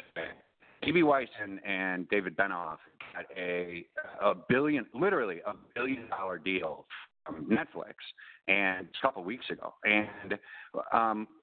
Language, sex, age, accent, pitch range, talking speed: English, male, 40-59, American, 95-130 Hz, 130 wpm